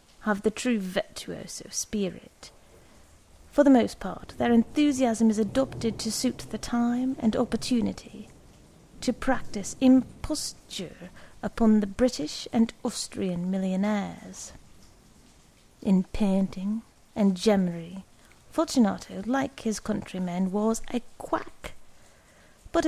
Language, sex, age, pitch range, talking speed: English, female, 30-49, 185-230 Hz, 105 wpm